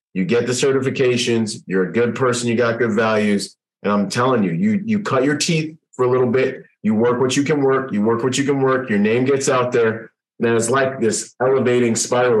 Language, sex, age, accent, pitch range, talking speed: English, male, 30-49, American, 115-135 Hz, 230 wpm